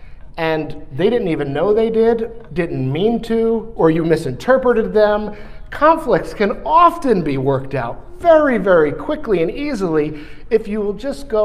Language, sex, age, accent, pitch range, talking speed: English, male, 50-69, American, 150-225 Hz, 155 wpm